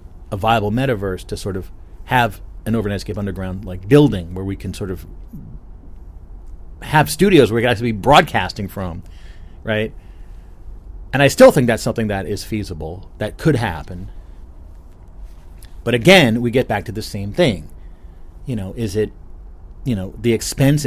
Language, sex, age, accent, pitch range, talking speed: English, male, 40-59, American, 85-115 Hz, 165 wpm